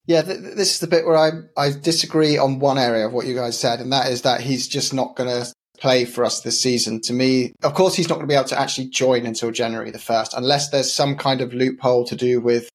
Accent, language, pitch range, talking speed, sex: British, English, 120-140 Hz, 275 wpm, male